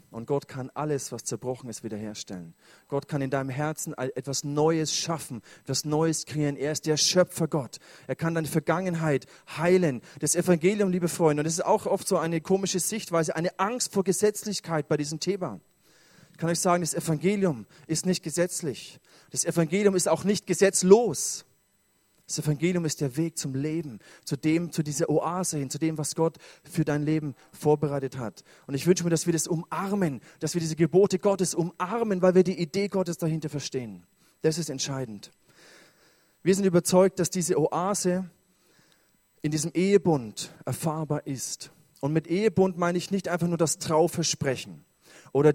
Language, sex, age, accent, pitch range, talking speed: German, male, 30-49, German, 145-180 Hz, 175 wpm